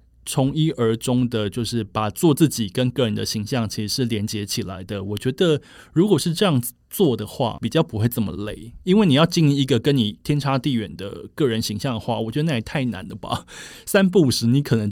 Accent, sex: native, male